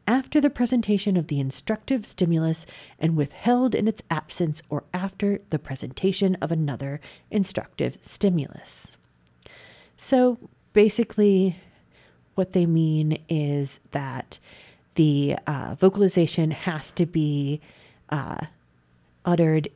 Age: 40-59